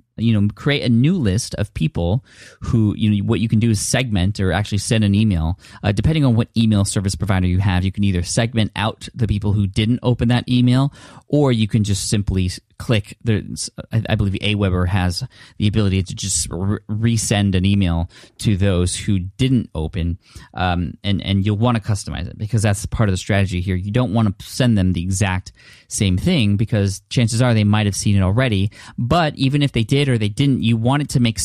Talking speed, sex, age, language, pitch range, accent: 215 wpm, male, 20-39, English, 100-120 Hz, American